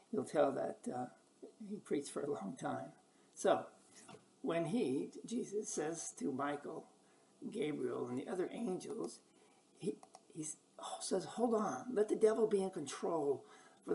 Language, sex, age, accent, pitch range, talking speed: English, male, 60-79, American, 150-245 Hz, 140 wpm